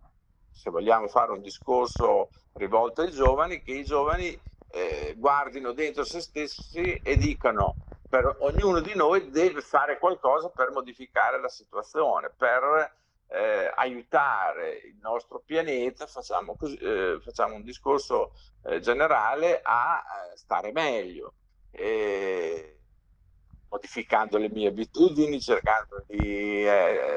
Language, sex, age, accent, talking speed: Italian, male, 50-69, native, 115 wpm